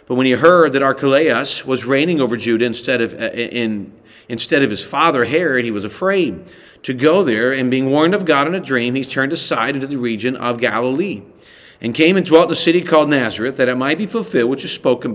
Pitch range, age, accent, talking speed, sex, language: 120-155 Hz, 40-59, American, 220 wpm, male, English